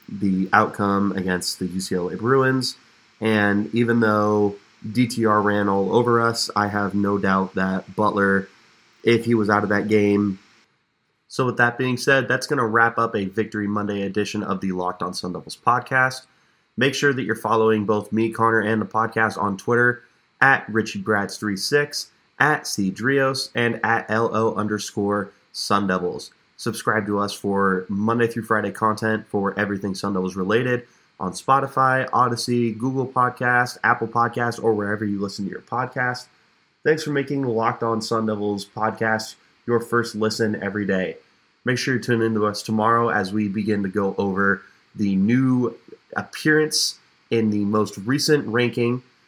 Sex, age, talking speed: male, 20-39, 165 wpm